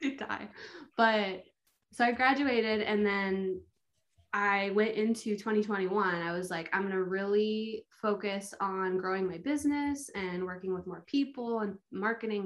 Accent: American